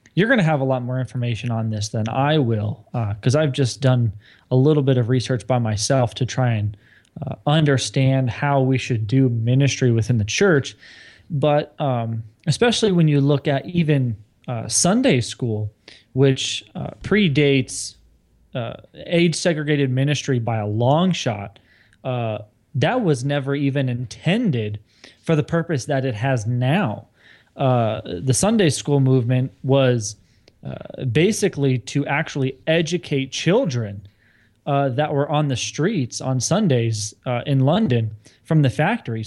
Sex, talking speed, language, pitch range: male, 150 wpm, English, 115-150 Hz